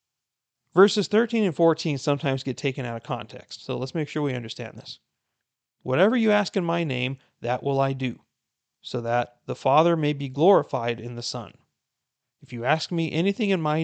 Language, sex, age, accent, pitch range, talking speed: English, male, 30-49, American, 125-165 Hz, 190 wpm